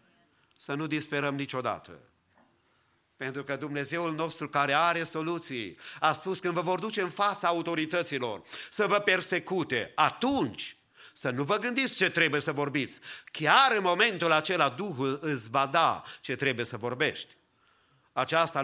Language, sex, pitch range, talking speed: English, male, 135-180 Hz, 145 wpm